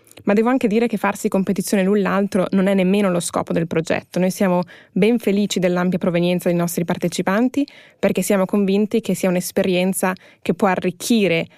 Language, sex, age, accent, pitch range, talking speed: German, female, 20-39, Italian, 180-205 Hz, 175 wpm